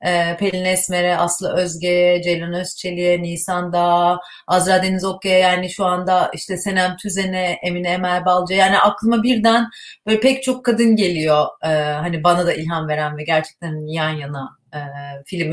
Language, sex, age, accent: Turkish, female, 30-49, native